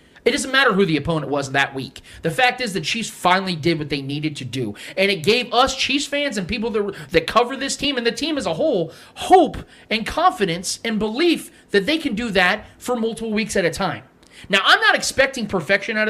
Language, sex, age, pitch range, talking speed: English, male, 30-49, 175-240 Hz, 230 wpm